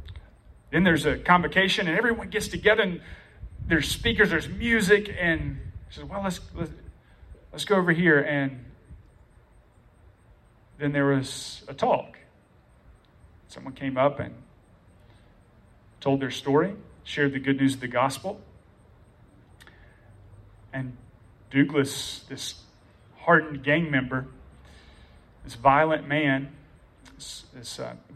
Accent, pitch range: American, 120-155 Hz